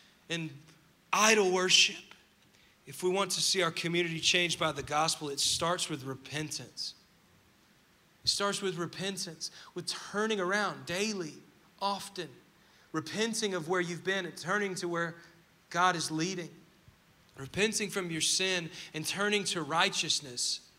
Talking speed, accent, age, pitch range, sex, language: 135 wpm, American, 30-49, 160-195 Hz, male, English